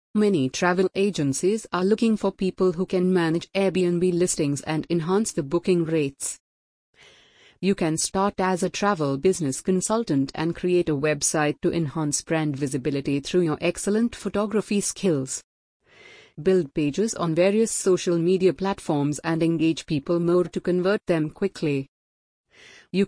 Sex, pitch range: female, 150-190 Hz